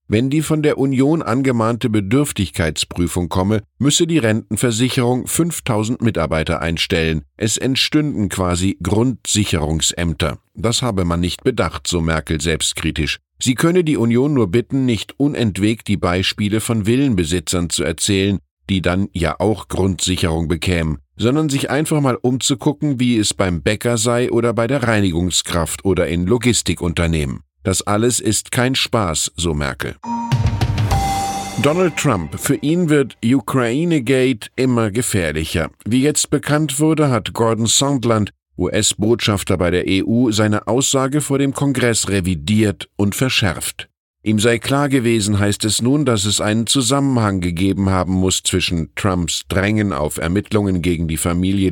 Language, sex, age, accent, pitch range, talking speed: German, male, 10-29, German, 90-125 Hz, 140 wpm